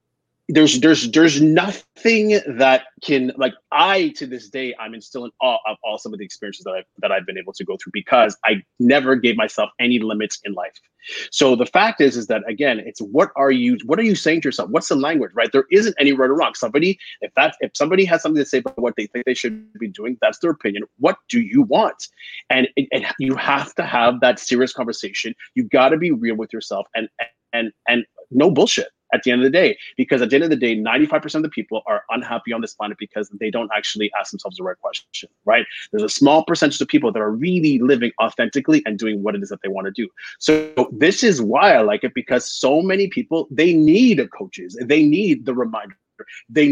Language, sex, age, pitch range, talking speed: English, male, 30-49, 115-175 Hz, 235 wpm